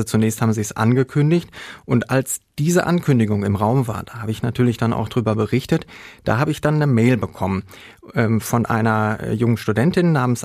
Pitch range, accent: 115-135 Hz, German